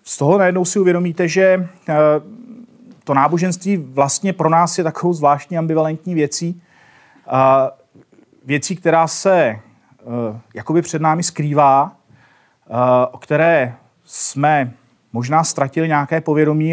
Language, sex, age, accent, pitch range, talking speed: Czech, male, 40-59, native, 130-155 Hz, 110 wpm